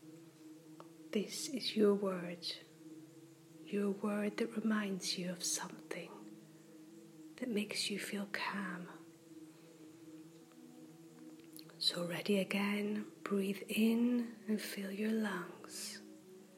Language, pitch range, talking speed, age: English, 160-205 Hz, 90 wpm, 30-49